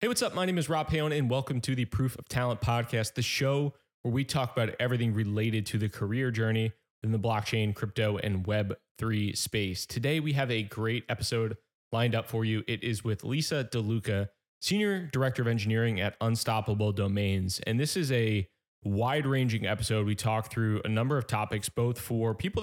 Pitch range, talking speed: 110-135 Hz, 195 wpm